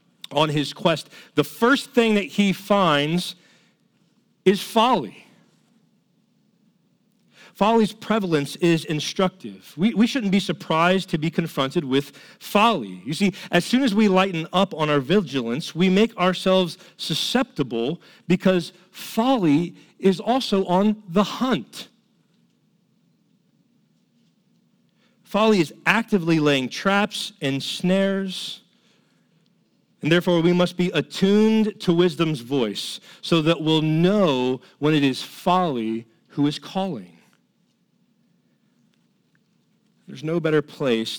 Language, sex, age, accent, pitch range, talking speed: English, male, 40-59, American, 145-195 Hz, 115 wpm